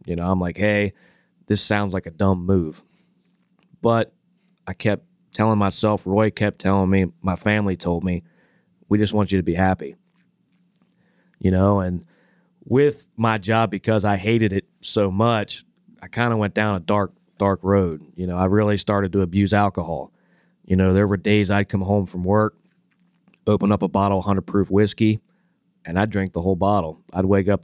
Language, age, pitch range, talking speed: English, 30-49, 95-110 Hz, 190 wpm